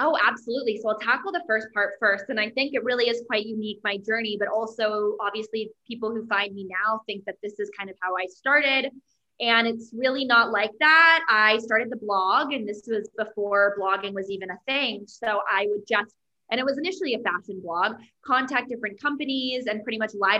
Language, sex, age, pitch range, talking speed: English, female, 20-39, 215-275 Hz, 215 wpm